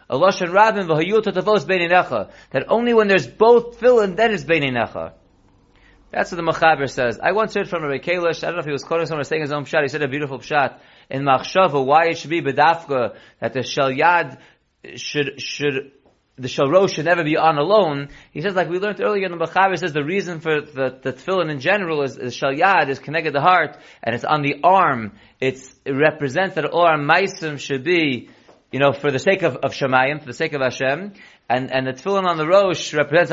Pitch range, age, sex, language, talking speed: 140-190 Hz, 30-49, male, English, 215 wpm